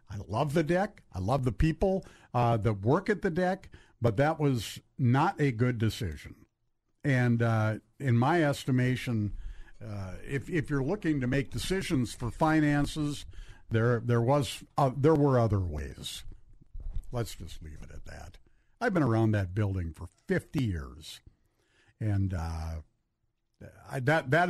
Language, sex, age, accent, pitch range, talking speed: English, male, 50-69, American, 105-145 Hz, 155 wpm